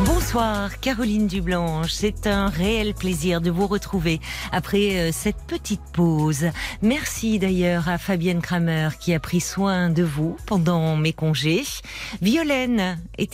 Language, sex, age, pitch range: French, female, 40-59, 160-205 Hz